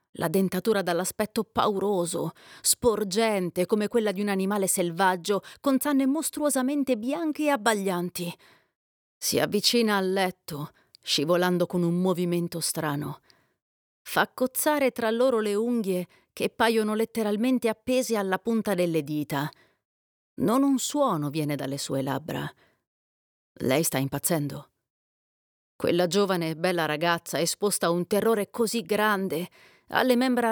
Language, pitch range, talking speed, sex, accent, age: Italian, 175-230 Hz, 125 wpm, female, native, 30-49